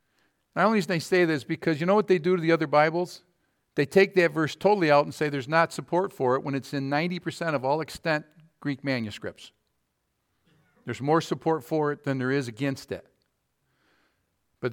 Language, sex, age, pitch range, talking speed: English, male, 50-69, 140-165 Hz, 200 wpm